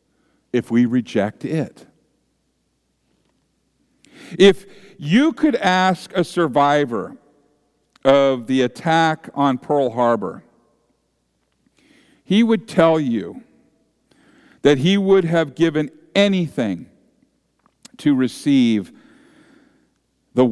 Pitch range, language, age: 120-190 Hz, English, 50-69